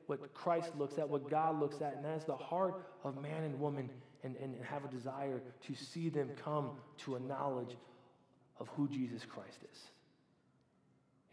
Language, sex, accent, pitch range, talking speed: English, male, American, 130-160 Hz, 190 wpm